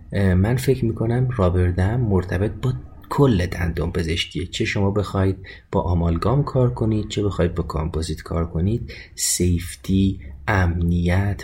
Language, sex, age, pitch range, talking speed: Persian, male, 30-49, 85-100 Hz, 125 wpm